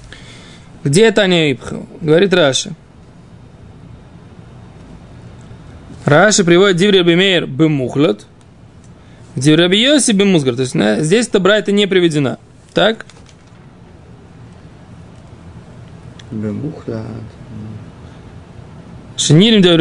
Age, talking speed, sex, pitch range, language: 20-39, 65 wpm, male, 155-210 Hz, Russian